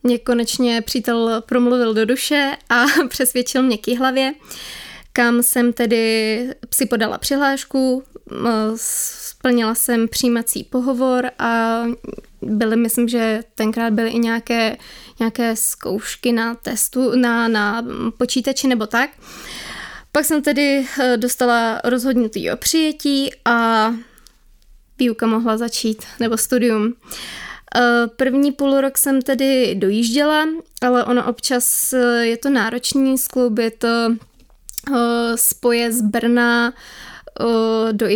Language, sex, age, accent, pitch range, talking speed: Czech, female, 20-39, native, 225-250 Hz, 105 wpm